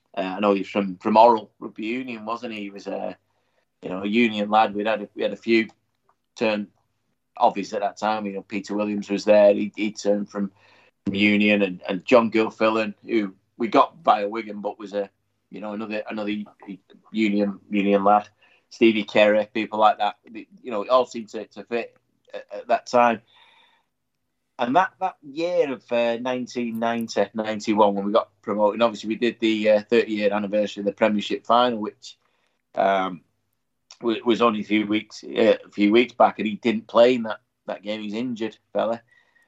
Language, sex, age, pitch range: English, male, 30-49, 105-120 Hz